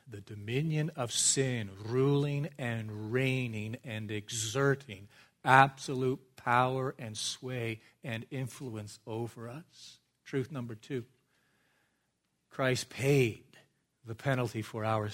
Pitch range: 115-145 Hz